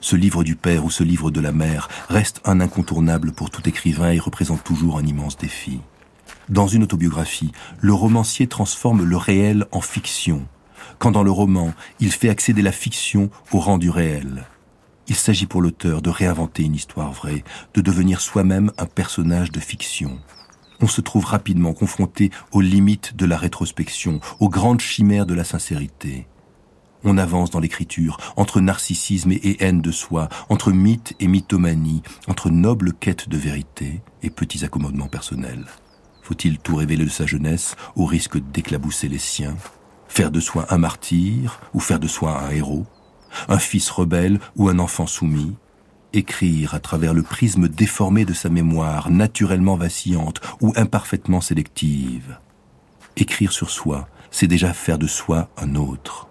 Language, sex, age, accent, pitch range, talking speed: French, male, 40-59, French, 80-100 Hz, 165 wpm